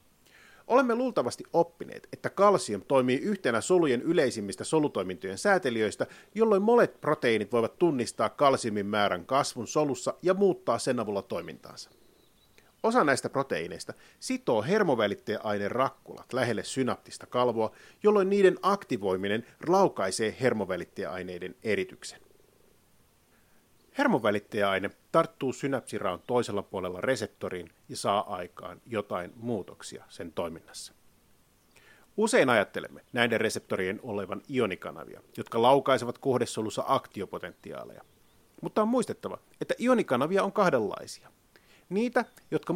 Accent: native